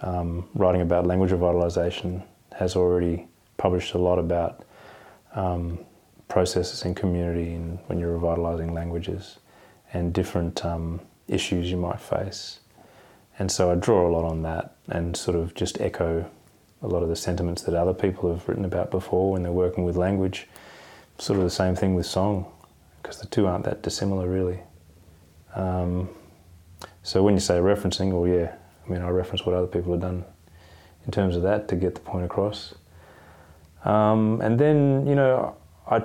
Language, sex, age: English, male, 20-39